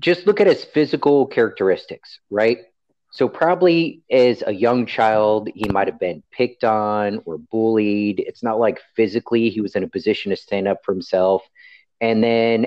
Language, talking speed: English, 170 wpm